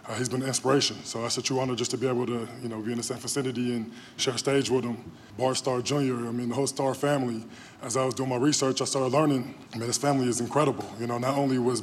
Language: English